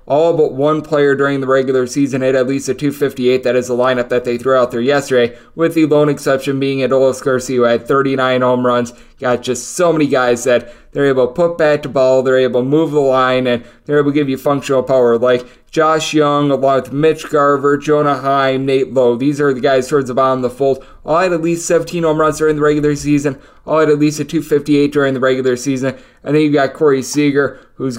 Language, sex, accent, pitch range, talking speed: English, male, American, 130-150 Hz, 240 wpm